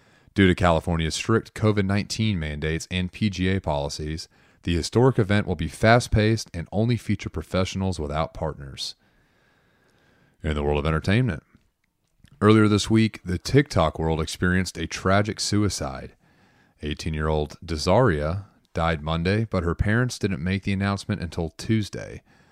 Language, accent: English, American